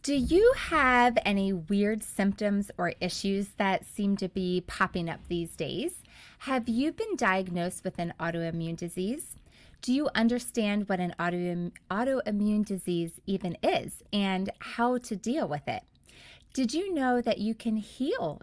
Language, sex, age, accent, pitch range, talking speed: English, female, 20-39, American, 180-240 Hz, 150 wpm